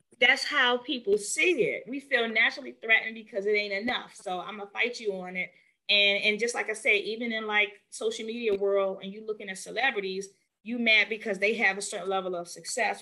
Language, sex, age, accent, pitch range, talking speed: English, female, 30-49, American, 190-275 Hz, 215 wpm